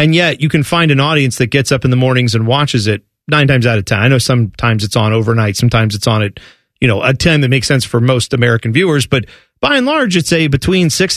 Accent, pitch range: American, 125-170 Hz